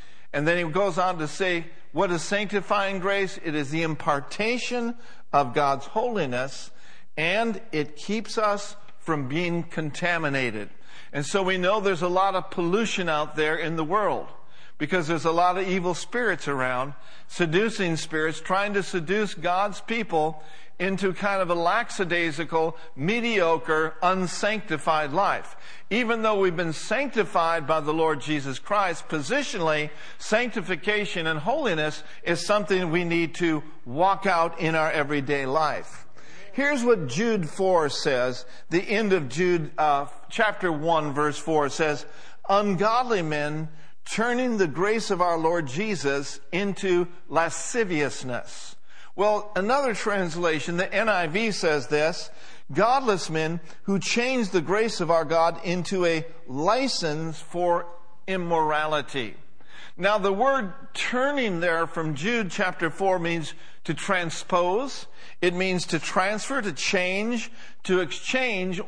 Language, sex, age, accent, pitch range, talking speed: English, male, 60-79, American, 160-205 Hz, 135 wpm